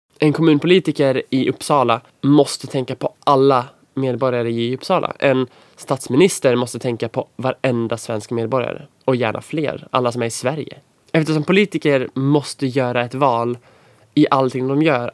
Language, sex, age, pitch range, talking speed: Swedish, male, 20-39, 125-150 Hz, 145 wpm